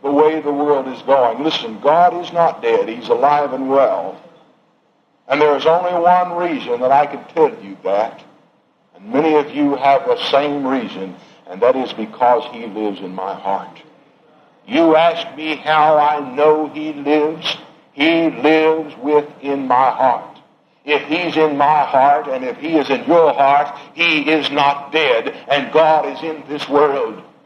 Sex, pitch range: male, 145-175 Hz